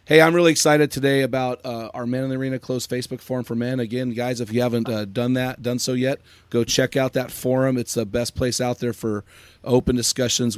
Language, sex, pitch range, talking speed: English, male, 115-140 Hz, 240 wpm